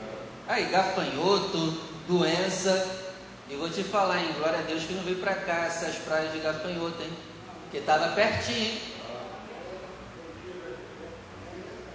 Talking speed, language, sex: 125 wpm, Portuguese, male